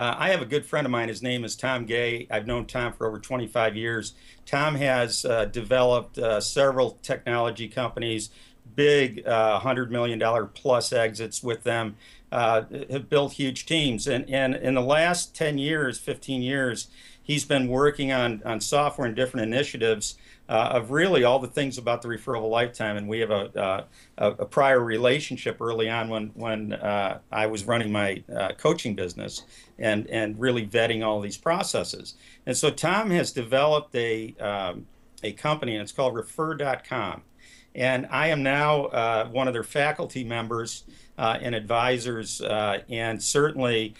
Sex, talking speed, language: male, 170 wpm, English